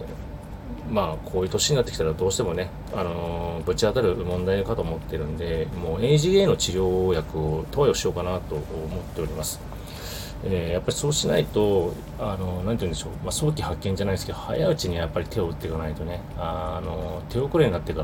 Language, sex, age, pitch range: Japanese, male, 30-49, 80-105 Hz